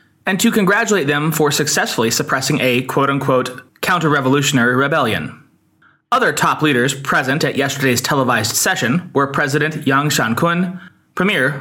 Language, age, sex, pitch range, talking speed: English, 20-39, male, 135-170 Hz, 125 wpm